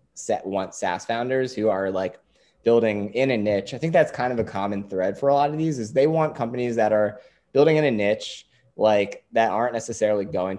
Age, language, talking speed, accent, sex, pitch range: 20-39, English, 220 wpm, American, male, 100-125 Hz